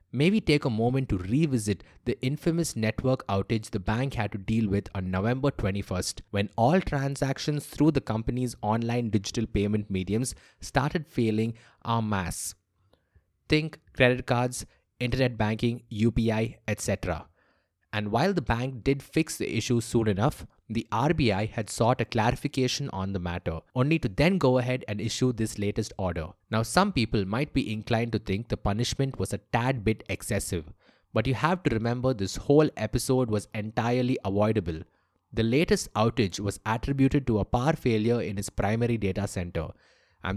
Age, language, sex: 20-39, English, male